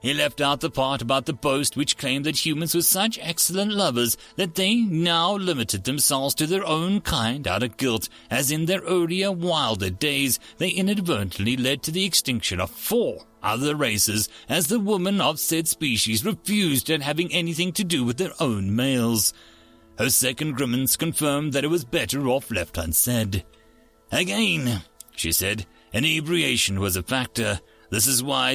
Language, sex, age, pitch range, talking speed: English, male, 30-49, 110-170 Hz, 170 wpm